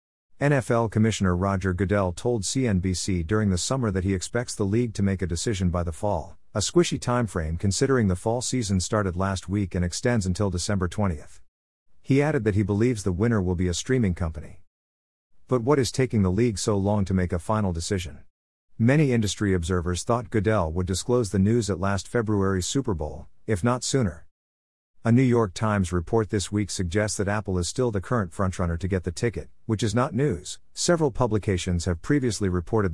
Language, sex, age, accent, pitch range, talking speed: English, male, 50-69, American, 90-115 Hz, 195 wpm